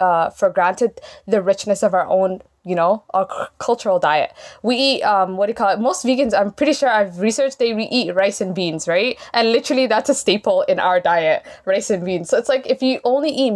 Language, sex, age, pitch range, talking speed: English, female, 10-29, 185-235 Hz, 235 wpm